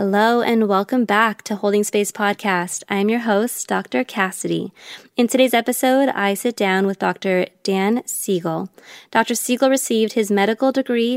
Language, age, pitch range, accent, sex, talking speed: English, 20-39, 190-225 Hz, American, female, 155 wpm